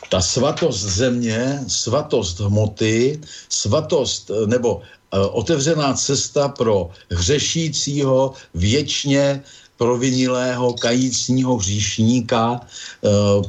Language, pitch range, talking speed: Slovak, 100-115 Hz, 75 wpm